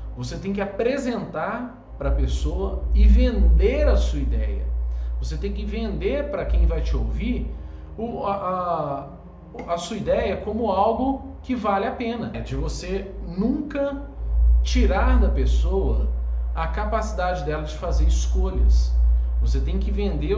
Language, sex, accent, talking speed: Portuguese, male, Brazilian, 145 wpm